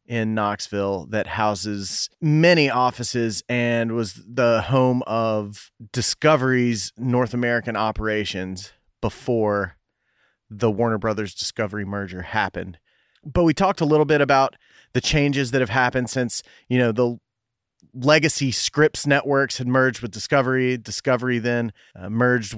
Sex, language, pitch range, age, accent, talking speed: male, English, 105-130 Hz, 30-49, American, 130 wpm